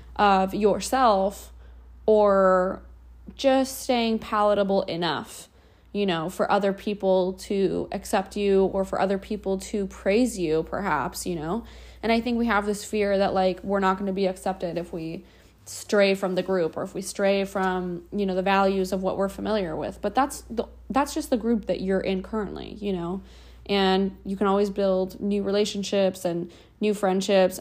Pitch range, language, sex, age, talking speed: 180-200 Hz, English, female, 20-39, 180 wpm